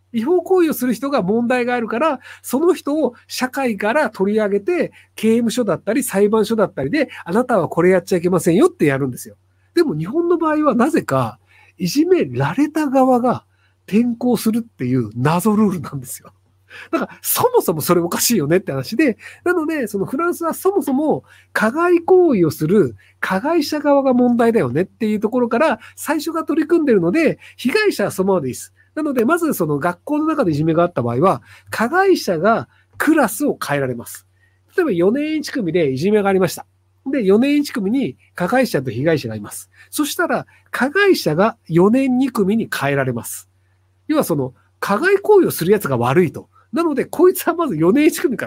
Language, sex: Japanese, male